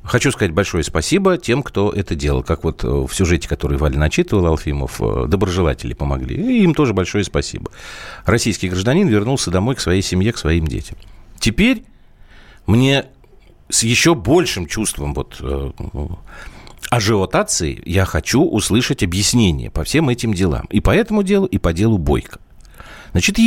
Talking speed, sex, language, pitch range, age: 150 wpm, male, Russian, 80-120 Hz, 50-69